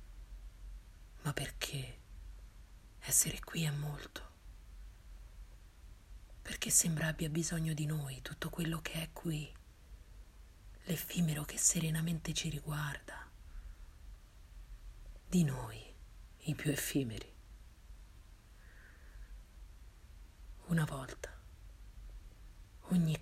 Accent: native